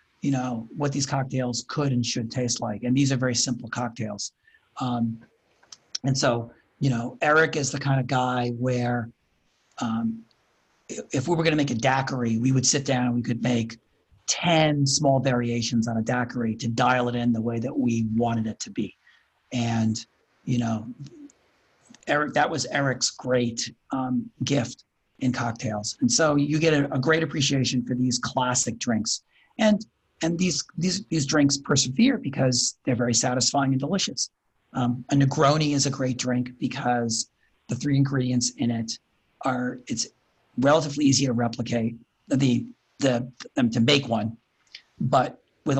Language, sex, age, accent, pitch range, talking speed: English, male, 40-59, American, 120-140 Hz, 165 wpm